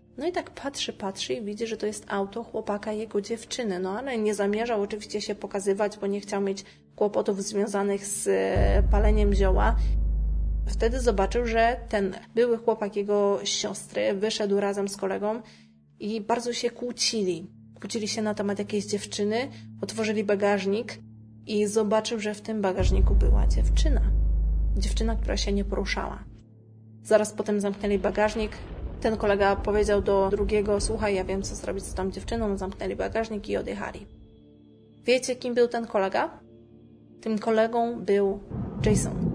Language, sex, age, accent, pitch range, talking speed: Polish, female, 20-39, native, 190-220 Hz, 150 wpm